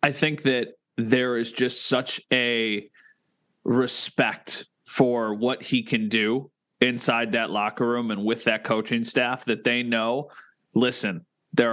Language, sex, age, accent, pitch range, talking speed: English, male, 30-49, American, 115-130 Hz, 145 wpm